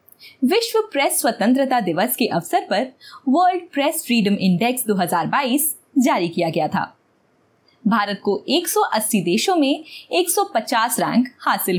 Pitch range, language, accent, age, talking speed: 200-320 Hz, Hindi, native, 20-39, 120 wpm